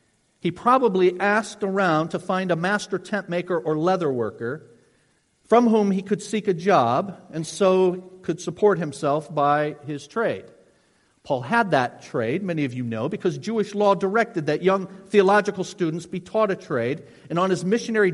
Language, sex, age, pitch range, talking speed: English, male, 50-69, 155-200 Hz, 170 wpm